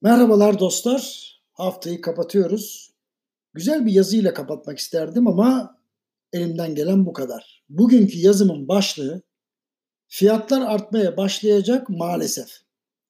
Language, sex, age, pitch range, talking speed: Turkish, male, 60-79, 190-240 Hz, 95 wpm